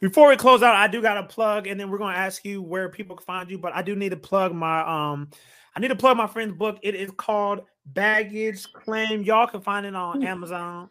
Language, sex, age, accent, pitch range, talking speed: English, male, 30-49, American, 180-215 Hz, 255 wpm